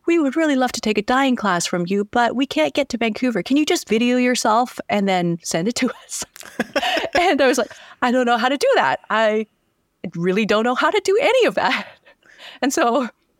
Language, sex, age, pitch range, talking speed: English, female, 30-49, 150-215 Hz, 235 wpm